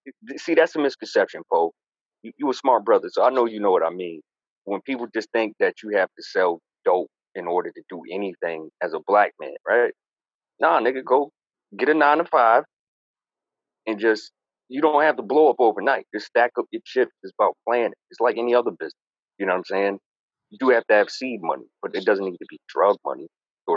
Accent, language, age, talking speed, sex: American, English, 30-49, 220 wpm, male